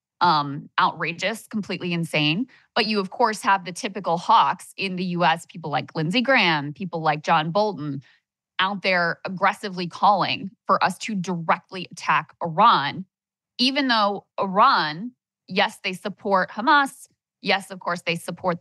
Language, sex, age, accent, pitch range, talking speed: English, female, 20-39, American, 165-210 Hz, 145 wpm